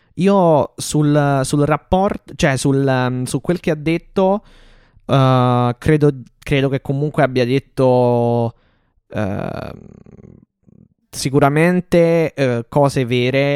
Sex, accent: male, native